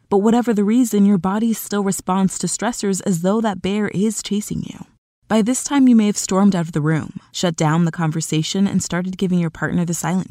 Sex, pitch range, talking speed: female, 170-210 Hz, 225 wpm